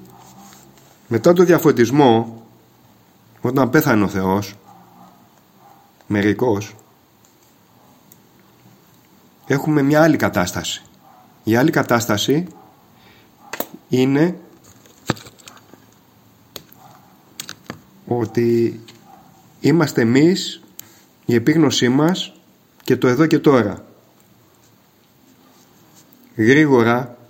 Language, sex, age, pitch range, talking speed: Greek, male, 30-49, 115-150 Hz, 60 wpm